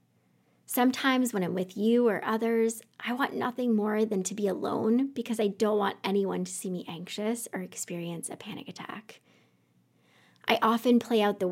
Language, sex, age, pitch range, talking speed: English, female, 20-39, 185-230 Hz, 175 wpm